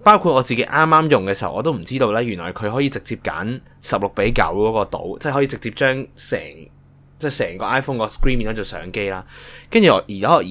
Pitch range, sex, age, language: 105-150 Hz, male, 20-39, Chinese